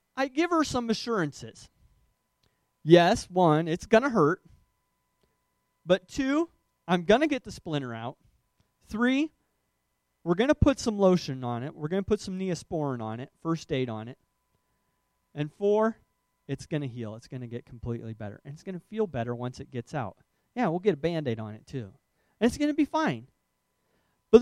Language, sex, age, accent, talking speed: English, male, 30-49, American, 190 wpm